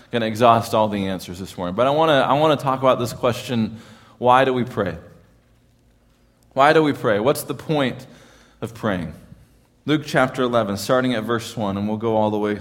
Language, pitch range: English, 95-130 Hz